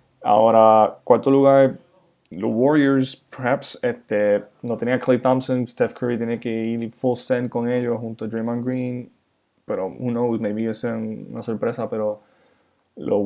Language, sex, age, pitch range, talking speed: Spanish, male, 10-29, 110-130 Hz, 150 wpm